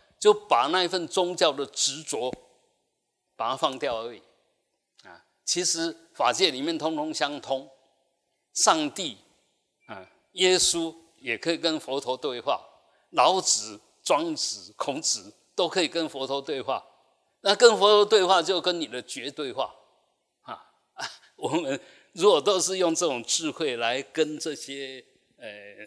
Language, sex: Chinese, male